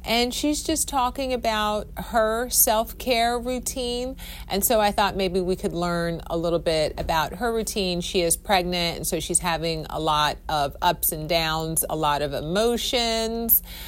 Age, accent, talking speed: 40-59, American, 175 wpm